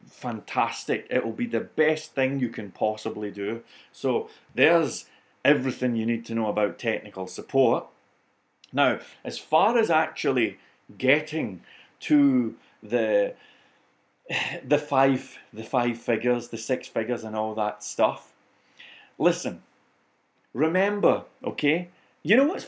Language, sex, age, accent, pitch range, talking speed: English, male, 30-49, British, 120-155 Hz, 125 wpm